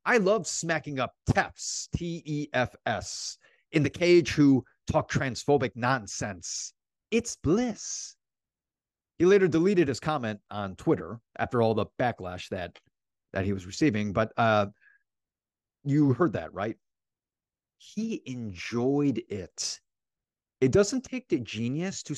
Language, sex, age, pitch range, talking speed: English, male, 30-49, 120-180 Hz, 125 wpm